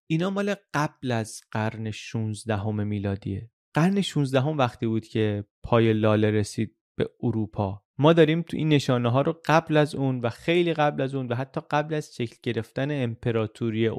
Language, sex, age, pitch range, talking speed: Persian, male, 30-49, 115-150 Hz, 170 wpm